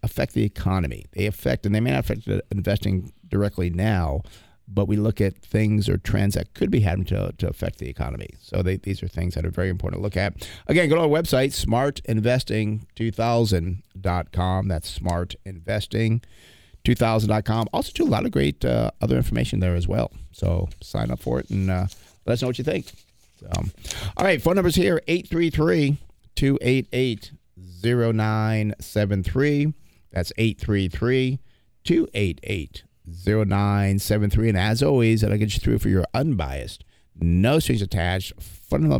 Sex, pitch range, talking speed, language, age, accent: male, 95-115 Hz, 150 wpm, English, 40-59, American